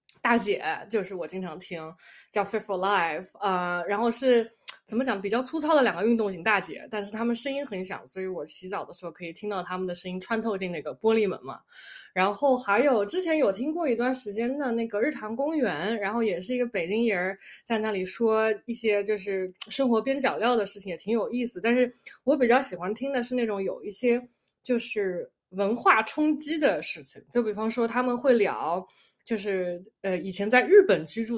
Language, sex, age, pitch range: Chinese, female, 20-39, 195-250 Hz